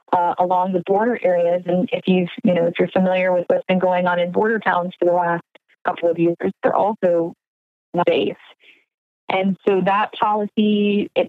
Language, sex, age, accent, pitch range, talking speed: English, female, 30-49, American, 175-200 Hz, 185 wpm